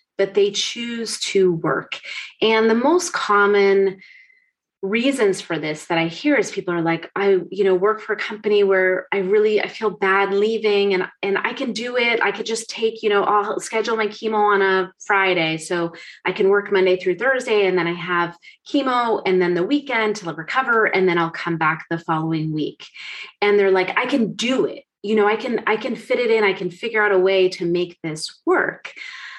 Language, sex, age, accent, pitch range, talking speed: English, female, 30-49, American, 175-230 Hz, 215 wpm